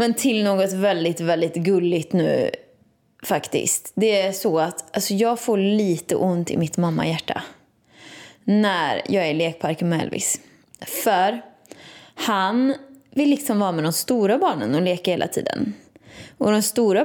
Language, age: Swedish, 20-39